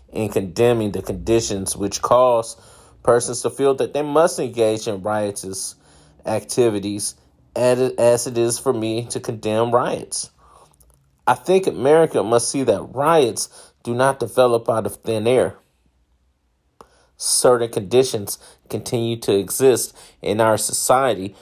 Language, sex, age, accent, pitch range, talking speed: English, male, 30-49, American, 100-115 Hz, 130 wpm